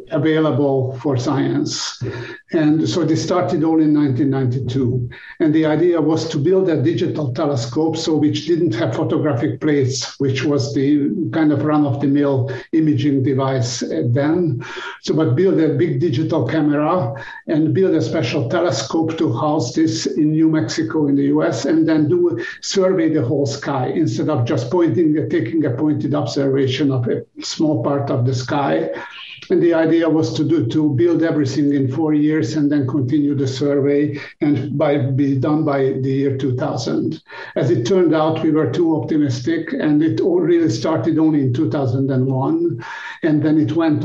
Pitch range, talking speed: 140-160 Hz, 170 wpm